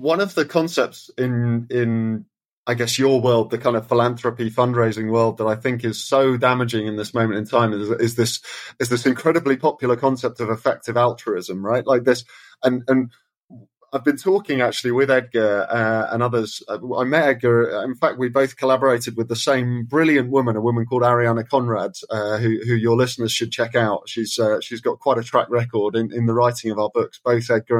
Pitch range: 115-135 Hz